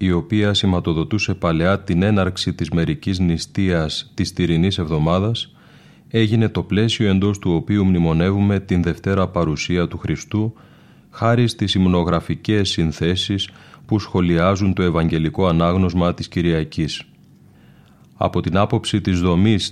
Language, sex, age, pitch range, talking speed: Greek, male, 30-49, 85-105 Hz, 120 wpm